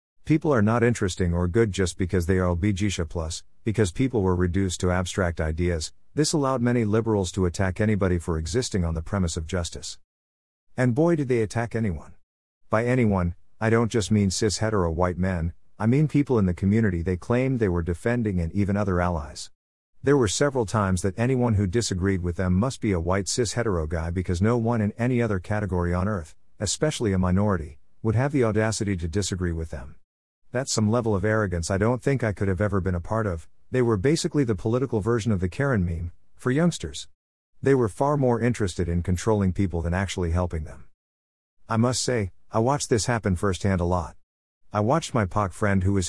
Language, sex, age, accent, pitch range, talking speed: English, male, 50-69, American, 90-115 Hz, 205 wpm